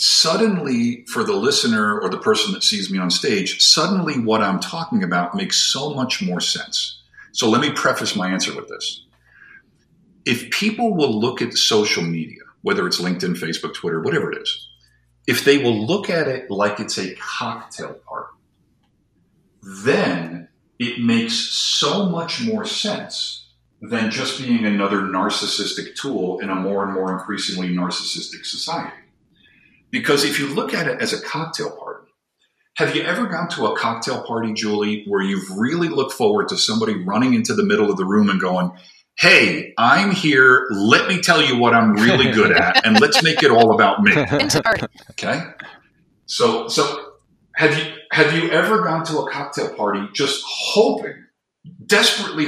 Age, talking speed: 50-69, 170 wpm